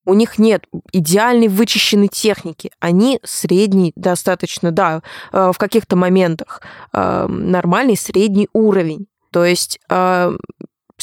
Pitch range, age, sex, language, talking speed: 175-205 Hz, 20-39, female, Russian, 100 wpm